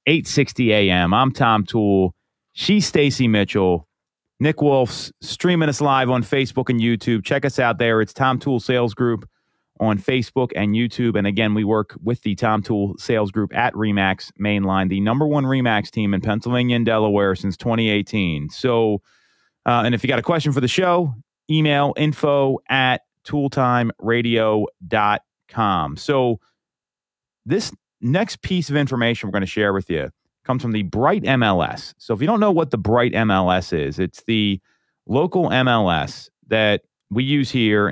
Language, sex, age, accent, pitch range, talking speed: English, male, 30-49, American, 105-135 Hz, 165 wpm